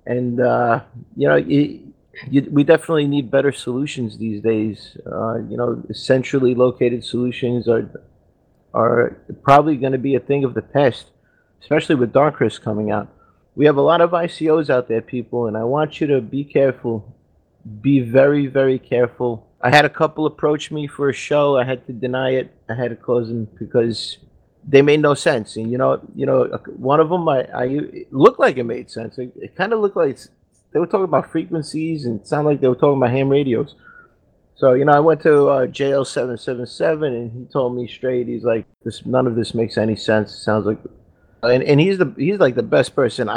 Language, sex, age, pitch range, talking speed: English, male, 30-49, 115-145 Hz, 215 wpm